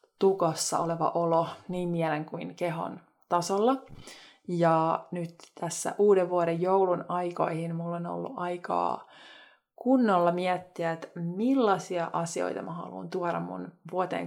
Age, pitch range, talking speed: 20-39, 170-200 Hz, 120 wpm